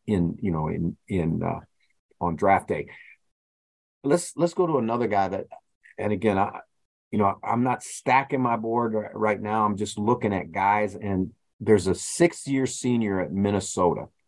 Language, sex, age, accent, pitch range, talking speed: English, male, 40-59, American, 90-105 Hz, 170 wpm